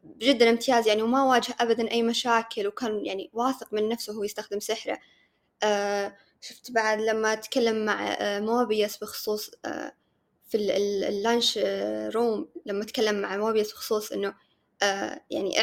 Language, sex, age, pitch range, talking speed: Arabic, female, 20-39, 205-245 Hz, 125 wpm